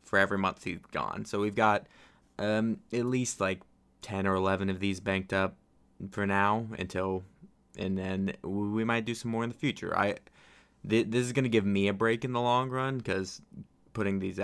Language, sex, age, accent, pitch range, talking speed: English, male, 20-39, American, 100-120 Hz, 200 wpm